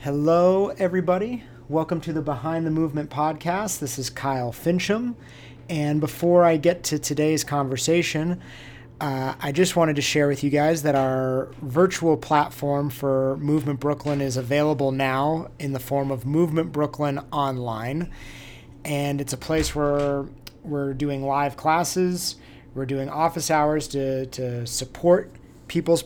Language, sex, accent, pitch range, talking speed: English, male, American, 135-160 Hz, 145 wpm